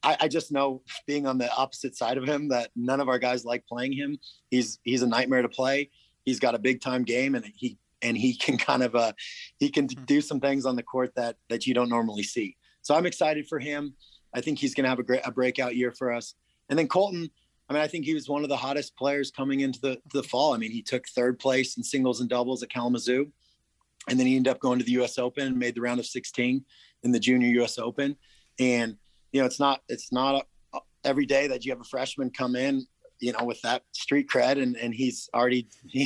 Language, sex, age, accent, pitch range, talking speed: English, male, 30-49, American, 125-140 Hz, 255 wpm